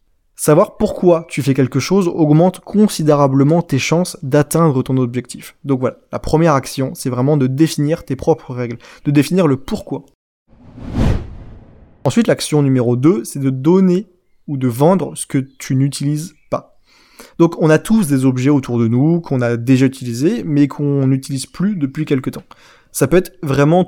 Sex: male